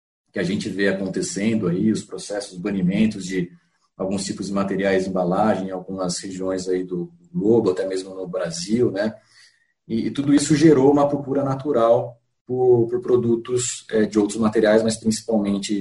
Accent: Brazilian